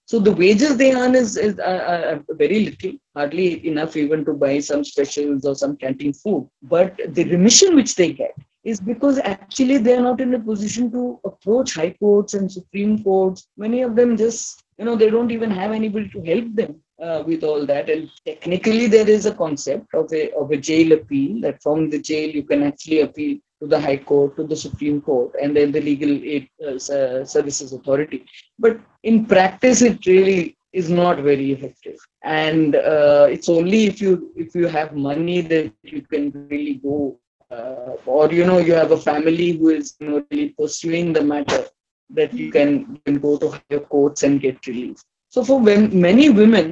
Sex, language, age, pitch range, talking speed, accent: female, English, 20-39, 150-225 Hz, 200 wpm, Indian